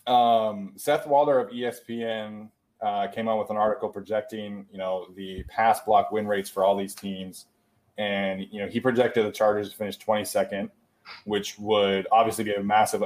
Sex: male